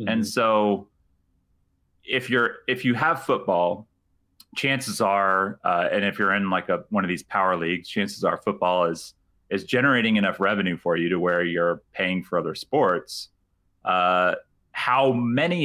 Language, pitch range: English, 90-105 Hz